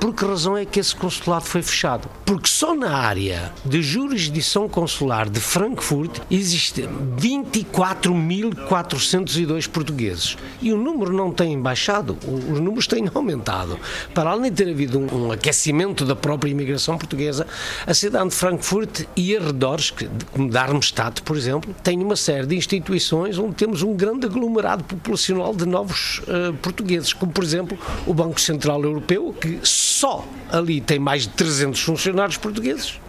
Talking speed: 155 wpm